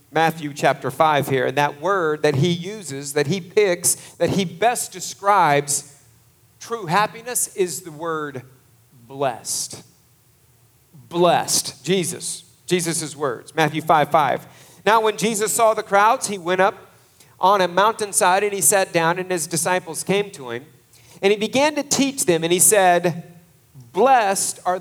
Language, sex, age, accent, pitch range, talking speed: English, male, 40-59, American, 145-210 Hz, 150 wpm